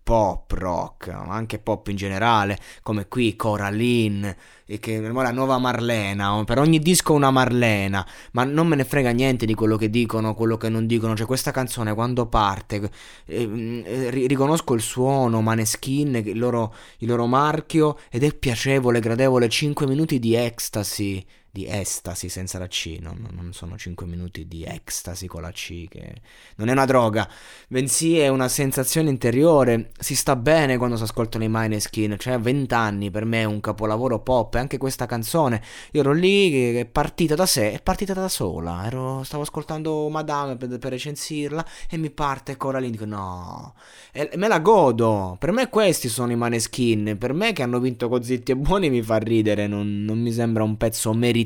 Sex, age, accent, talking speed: male, 20-39, native, 185 wpm